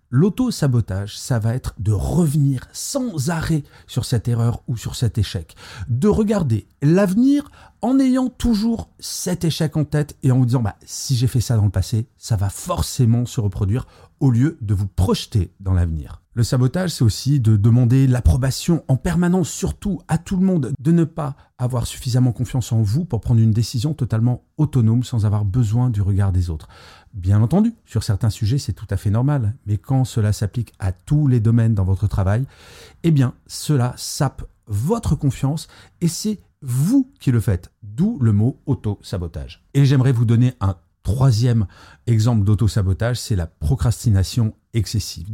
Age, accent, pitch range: 40-59, French, 105-135 Hz